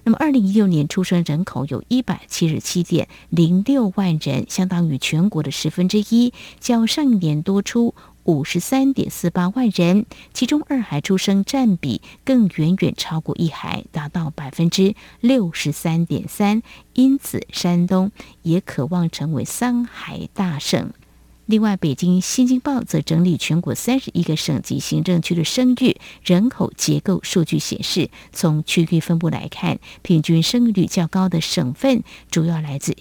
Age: 50-69